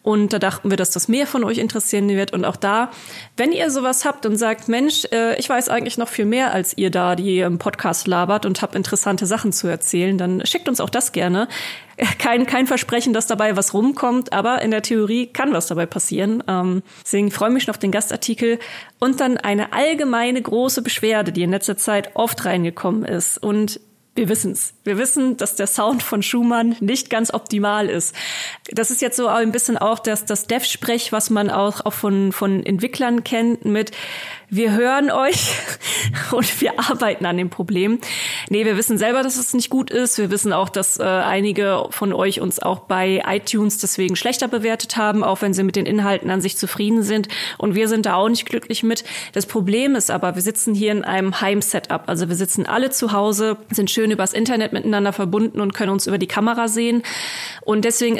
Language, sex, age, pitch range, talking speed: German, female, 30-49, 200-235 Hz, 205 wpm